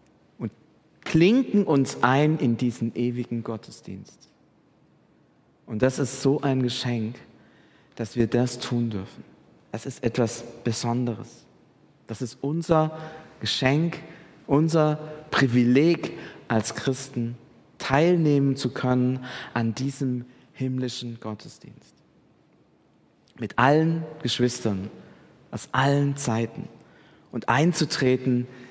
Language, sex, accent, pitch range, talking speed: German, male, German, 120-155 Hz, 95 wpm